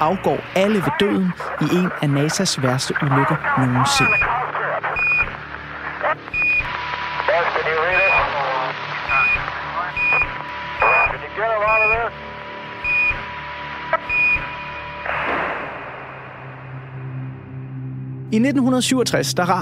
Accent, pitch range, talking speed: native, 140-195 Hz, 40 wpm